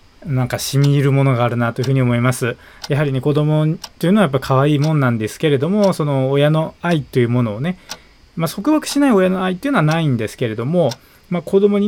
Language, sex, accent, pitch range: Japanese, male, native, 125-175 Hz